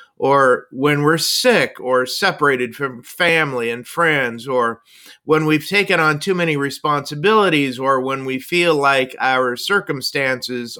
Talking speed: 140 wpm